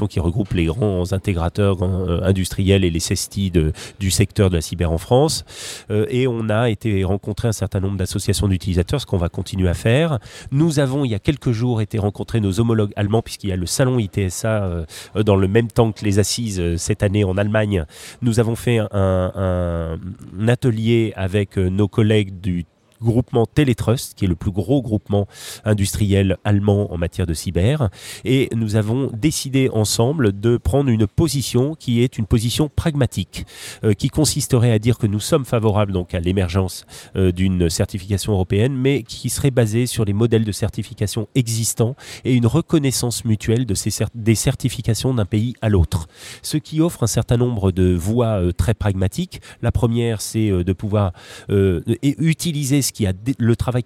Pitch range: 95-120 Hz